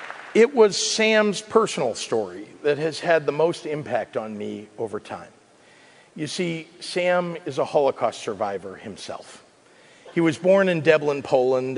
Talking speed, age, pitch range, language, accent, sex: 150 wpm, 50-69, 120-165 Hz, English, American, male